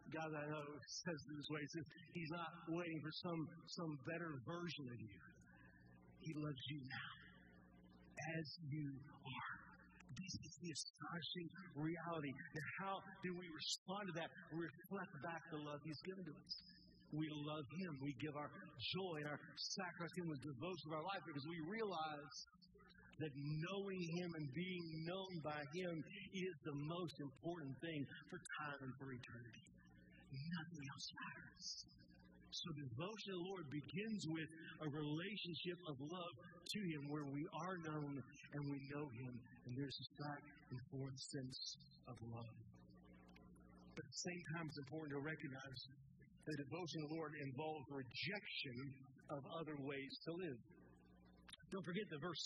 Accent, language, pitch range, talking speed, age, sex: American, English, 140-175 Hz, 160 wpm, 50-69, male